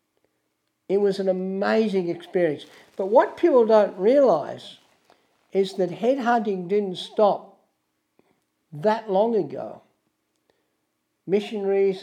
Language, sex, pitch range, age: English, male, 165-215 Hz, 60-79